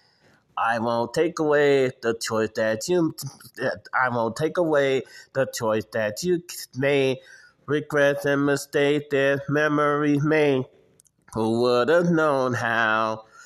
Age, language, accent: 30-49, English, American